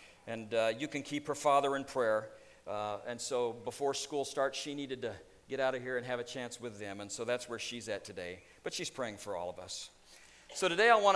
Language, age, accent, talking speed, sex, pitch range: English, 50-69, American, 245 wpm, male, 125-165 Hz